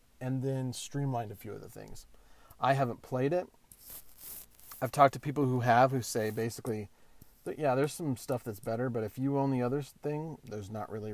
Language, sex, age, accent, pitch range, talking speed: English, male, 40-59, American, 110-145 Hz, 200 wpm